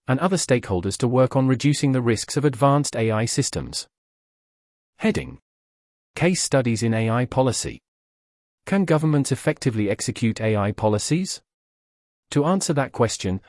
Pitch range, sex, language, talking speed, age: 110-140 Hz, male, English, 130 wpm, 40-59